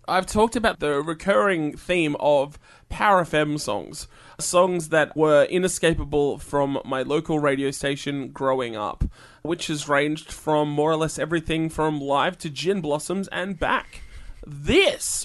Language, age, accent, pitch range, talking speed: English, 20-39, Australian, 145-195 Hz, 145 wpm